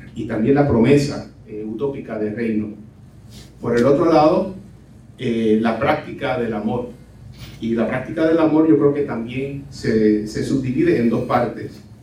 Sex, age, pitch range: male, 40-59, 110-140 Hz